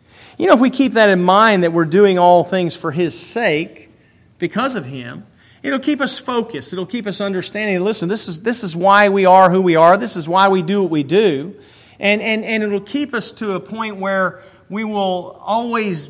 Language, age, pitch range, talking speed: English, 40-59, 160-200 Hz, 215 wpm